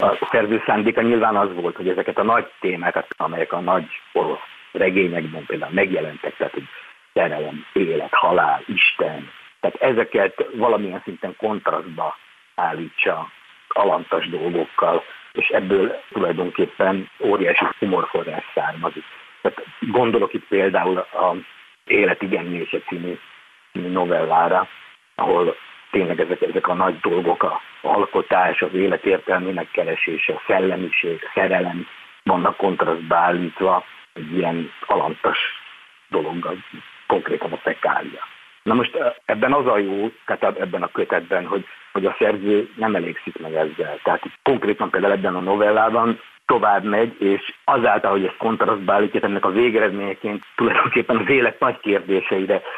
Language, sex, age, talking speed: Hungarian, male, 50-69, 125 wpm